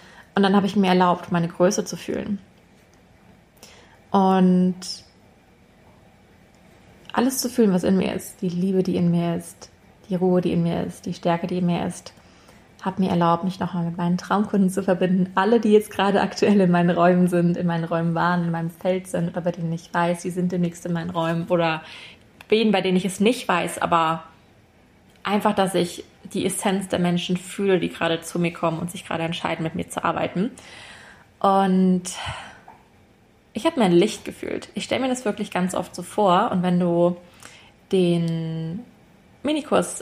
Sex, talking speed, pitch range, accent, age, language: female, 185 wpm, 170-195 Hz, German, 20-39, German